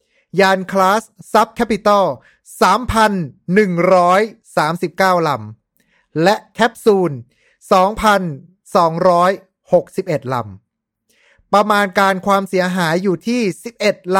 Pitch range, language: 160-205 Hz, Thai